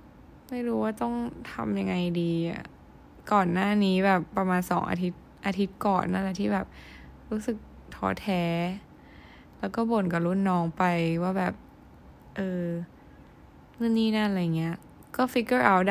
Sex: female